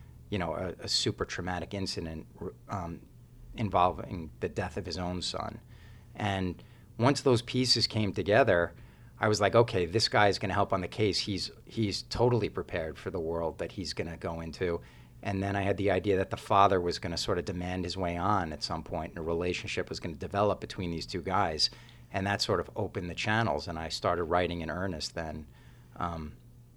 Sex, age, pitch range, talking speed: male, 40-59, 90-110 Hz, 210 wpm